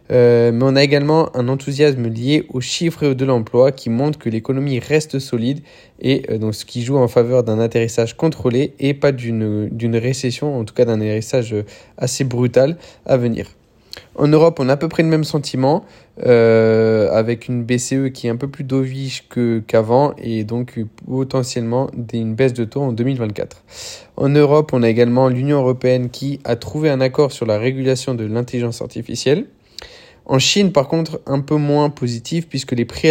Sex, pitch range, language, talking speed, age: male, 120-140 Hz, French, 185 wpm, 20-39